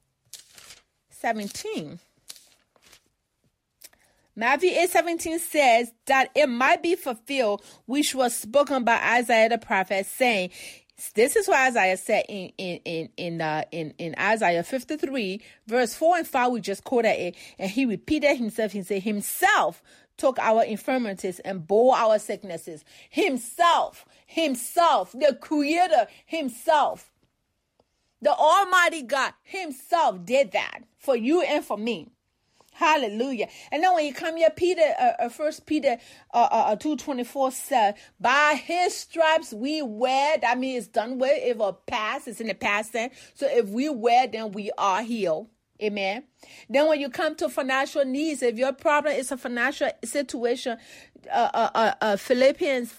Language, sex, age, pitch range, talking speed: English, female, 30-49, 220-305 Hz, 150 wpm